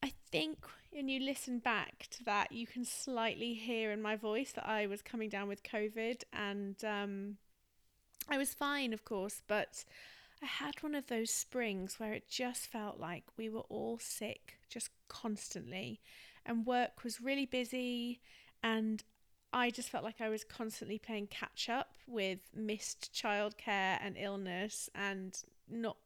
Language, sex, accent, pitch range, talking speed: English, female, British, 205-240 Hz, 160 wpm